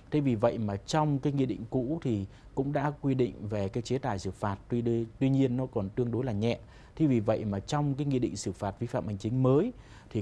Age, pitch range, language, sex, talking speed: 20-39, 105-130 Hz, Vietnamese, male, 270 wpm